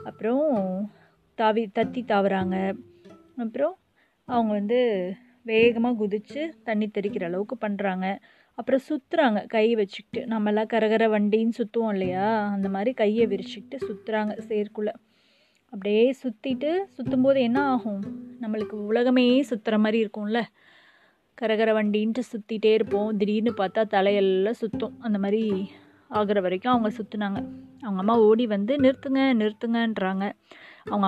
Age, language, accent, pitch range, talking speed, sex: 20-39, Tamil, native, 200-240 Hz, 110 wpm, female